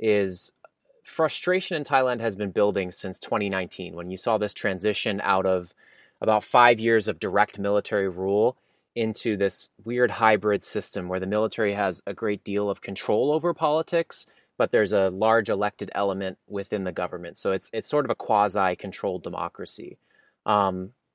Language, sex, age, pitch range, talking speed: English, male, 20-39, 95-120 Hz, 160 wpm